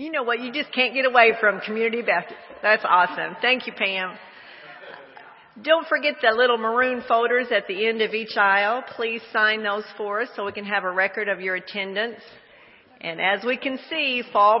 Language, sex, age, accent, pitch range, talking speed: English, female, 50-69, American, 205-250 Hz, 195 wpm